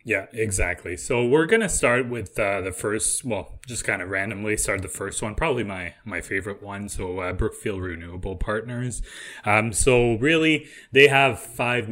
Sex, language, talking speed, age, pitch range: male, English, 180 wpm, 20-39, 90-115 Hz